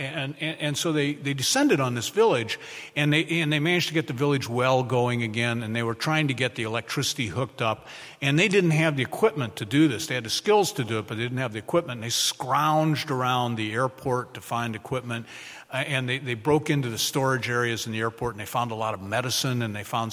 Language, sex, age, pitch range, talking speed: English, male, 50-69, 115-155 Hz, 245 wpm